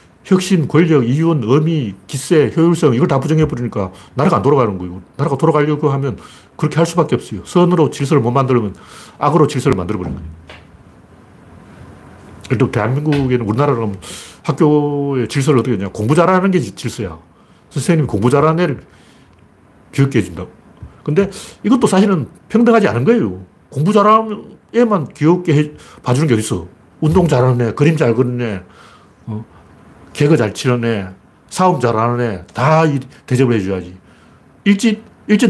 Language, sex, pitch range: Korean, male, 110-170 Hz